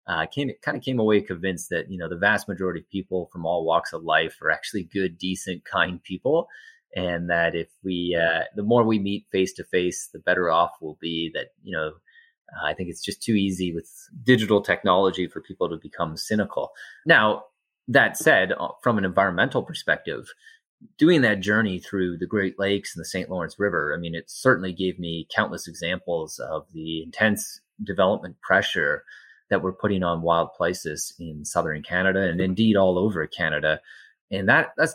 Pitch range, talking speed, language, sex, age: 90-110 Hz, 190 wpm, English, male, 30-49